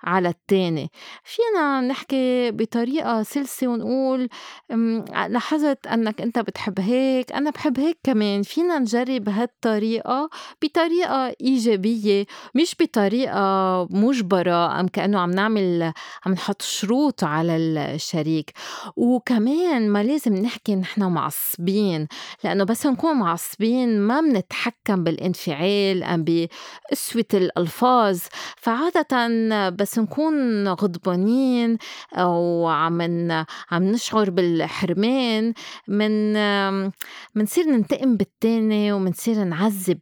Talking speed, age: 95 wpm, 30-49